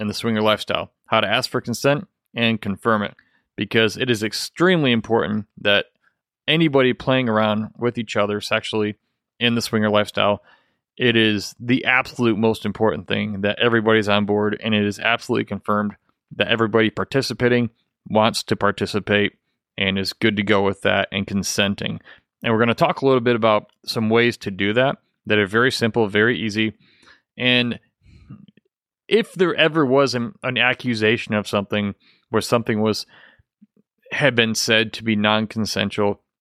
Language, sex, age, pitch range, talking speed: English, male, 30-49, 105-120 Hz, 160 wpm